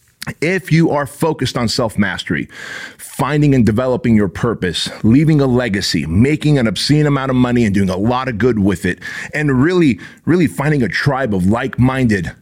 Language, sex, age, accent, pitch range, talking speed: English, male, 30-49, American, 100-130 Hz, 185 wpm